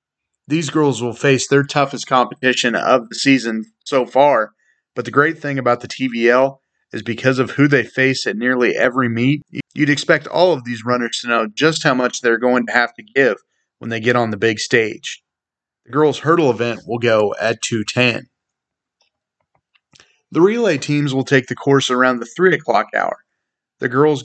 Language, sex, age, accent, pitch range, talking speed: English, male, 30-49, American, 120-145 Hz, 185 wpm